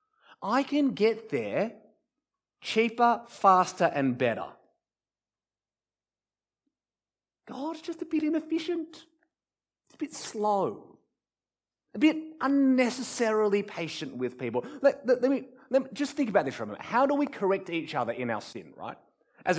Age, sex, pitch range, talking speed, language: 30-49, male, 180-275 Hz, 145 wpm, English